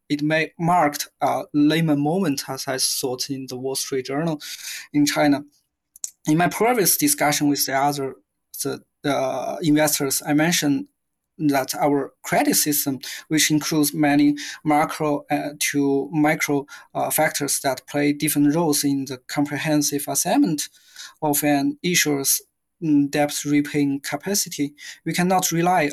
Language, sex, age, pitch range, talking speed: English, male, 20-39, 140-150 Hz, 135 wpm